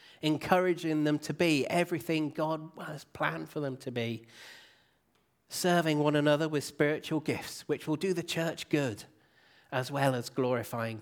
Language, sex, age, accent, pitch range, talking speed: English, male, 30-49, British, 130-160 Hz, 150 wpm